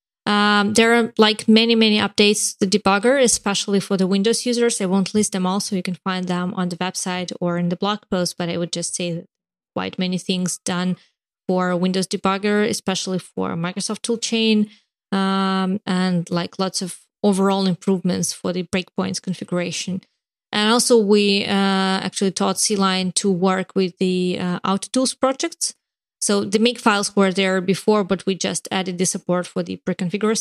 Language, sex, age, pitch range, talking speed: English, female, 20-39, 180-210 Hz, 180 wpm